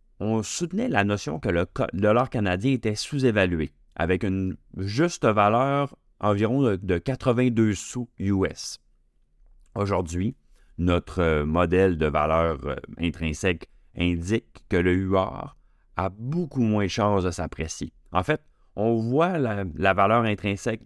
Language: French